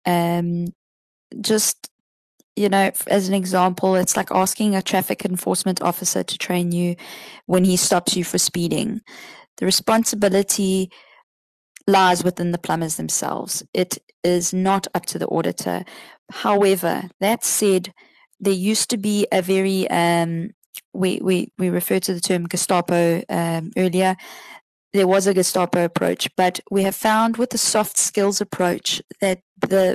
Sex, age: female, 20-39